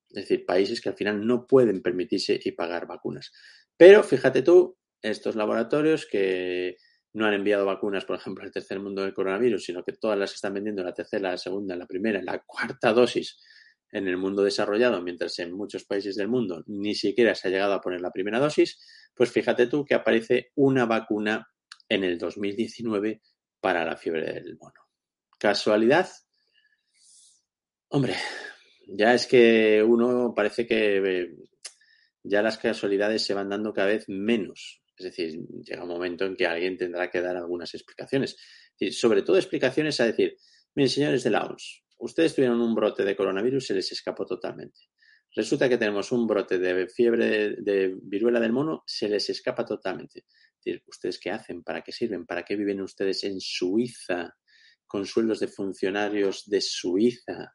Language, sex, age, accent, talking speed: Spanish, male, 30-49, Spanish, 175 wpm